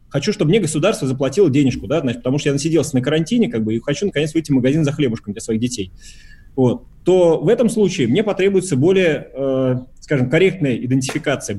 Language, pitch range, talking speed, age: Russian, 125-170 Hz, 175 wpm, 30-49